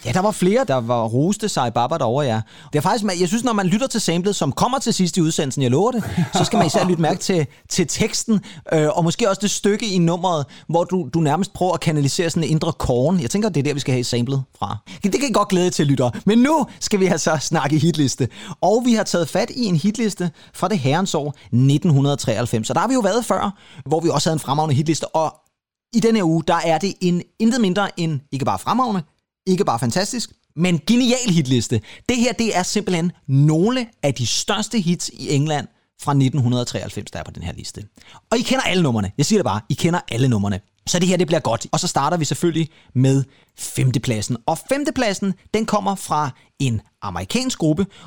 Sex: male